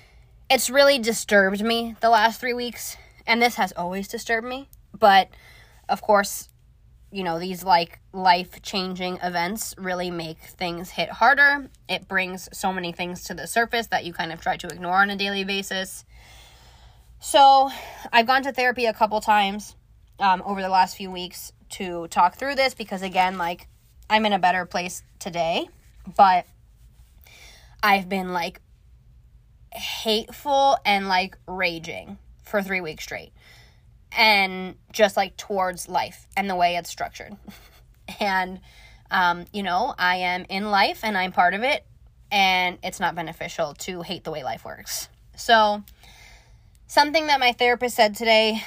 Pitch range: 180-225 Hz